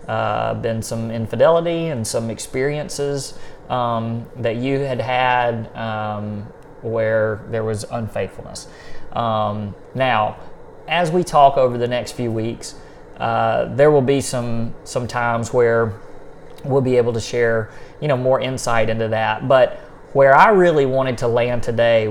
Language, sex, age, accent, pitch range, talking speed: English, male, 30-49, American, 115-130 Hz, 145 wpm